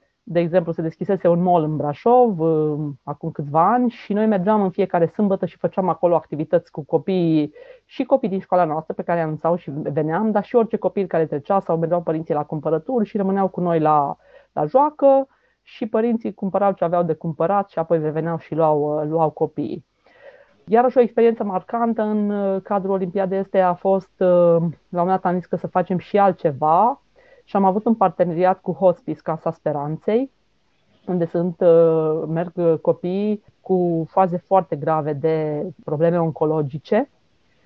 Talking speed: 170 wpm